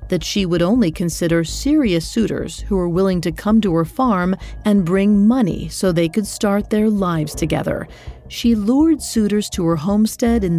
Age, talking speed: 40-59, 180 wpm